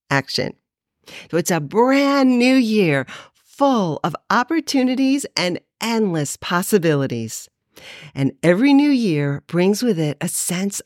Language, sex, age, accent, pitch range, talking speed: English, female, 50-69, American, 165-235 Hz, 120 wpm